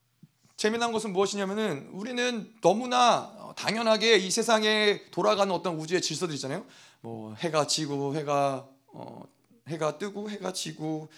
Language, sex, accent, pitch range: Korean, male, native, 170-265 Hz